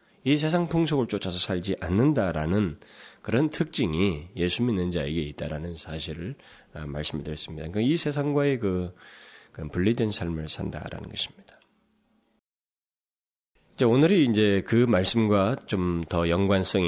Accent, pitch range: native, 80-115 Hz